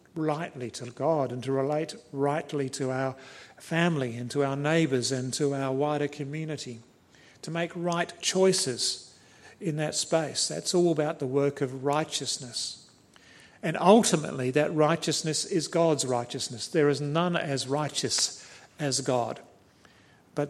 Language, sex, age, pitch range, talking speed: English, male, 50-69, 130-155 Hz, 140 wpm